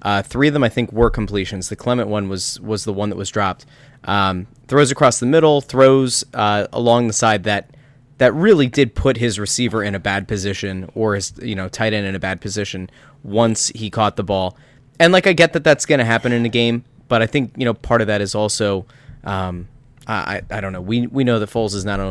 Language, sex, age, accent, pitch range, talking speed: English, male, 20-39, American, 105-140 Hz, 240 wpm